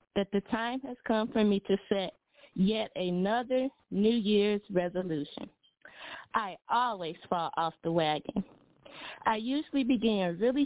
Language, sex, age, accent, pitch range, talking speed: English, female, 30-49, American, 190-245 Hz, 135 wpm